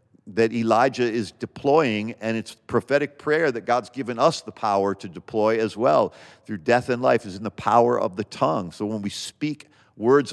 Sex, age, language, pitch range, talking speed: male, 50-69, English, 100-125 Hz, 200 wpm